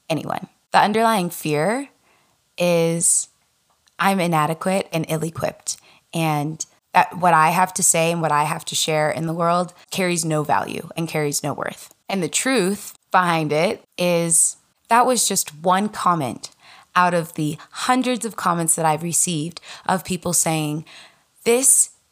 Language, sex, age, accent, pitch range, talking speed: English, female, 20-39, American, 160-190 Hz, 150 wpm